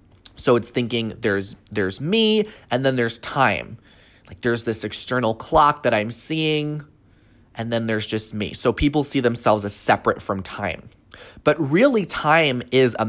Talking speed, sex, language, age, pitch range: 165 wpm, male, English, 20-39, 110-155 Hz